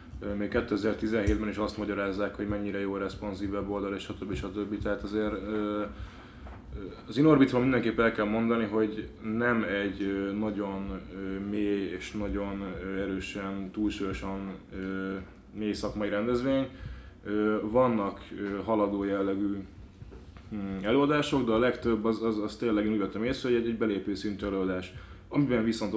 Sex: male